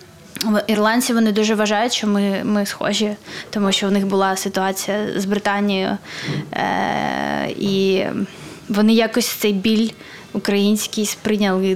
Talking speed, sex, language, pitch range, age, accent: 125 wpm, female, Ukrainian, 195-220 Hz, 20-39, native